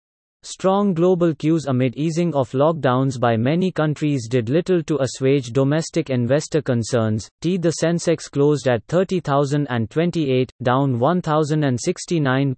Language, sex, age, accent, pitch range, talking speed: English, male, 30-49, Indian, 130-160 Hz, 115 wpm